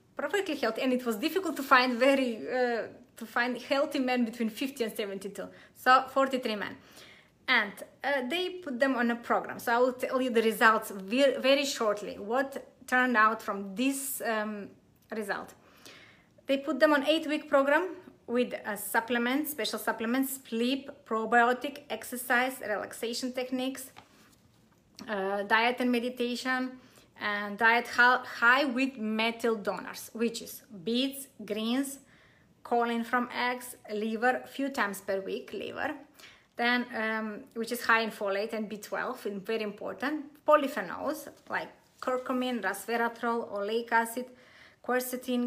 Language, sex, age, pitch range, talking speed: English, female, 20-39, 225-270 Hz, 135 wpm